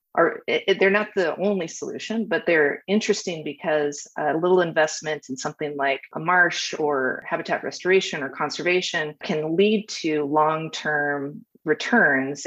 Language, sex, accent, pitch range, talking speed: English, female, American, 150-185 Hz, 135 wpm